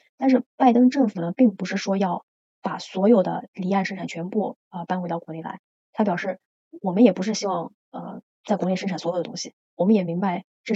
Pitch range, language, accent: 185-215 Hz, Chinese, native